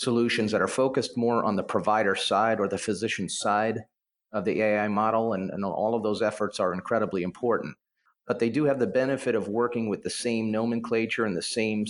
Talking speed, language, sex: 205 wpm, English, male